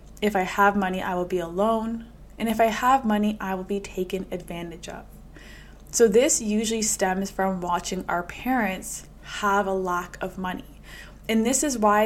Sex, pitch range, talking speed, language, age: female, 195-230 Hz, 180 wpm, English, 20-39